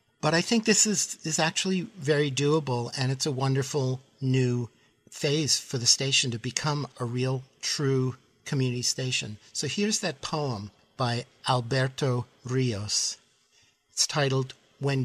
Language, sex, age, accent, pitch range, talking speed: English, male, 50-69, American, 125-150 Hz, 140 wpm